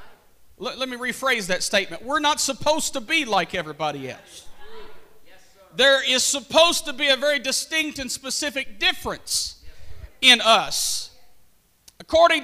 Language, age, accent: English, 50-69, American